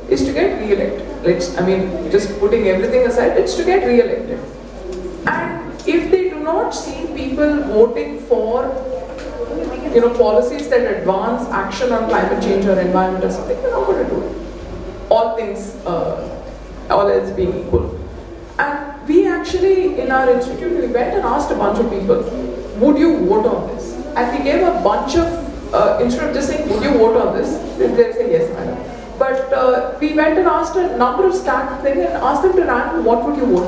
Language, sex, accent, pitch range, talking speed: English, female, Indian, 240-375 Hz, 190 wpm